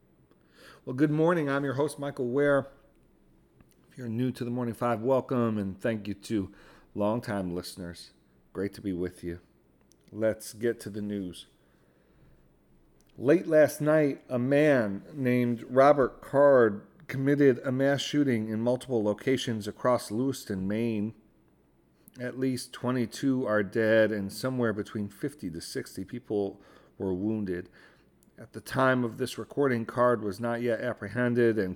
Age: 40-59